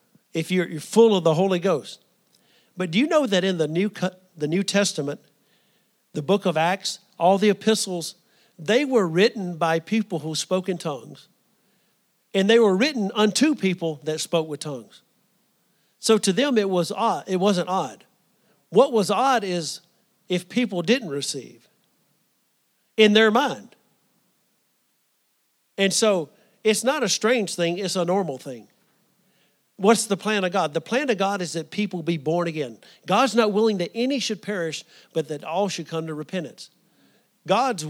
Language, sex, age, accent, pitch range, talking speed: English, male, 50-69, American, 170-220 Hz, 170 wpm